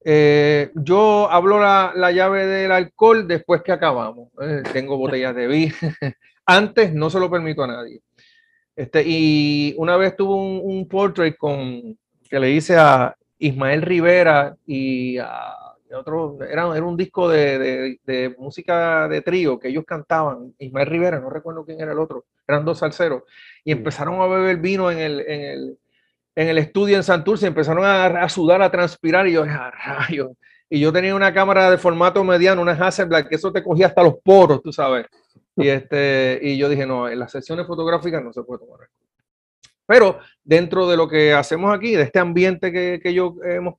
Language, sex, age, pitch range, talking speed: Spanish, male, 30-49, 140-180 Hz, 180 wpm